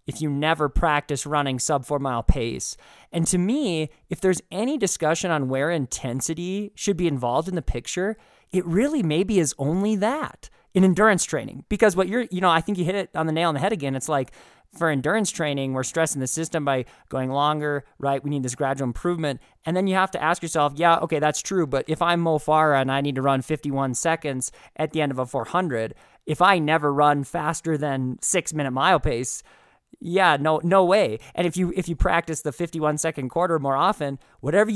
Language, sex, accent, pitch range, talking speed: English, male, American, 140-180 Hz, 215 wpm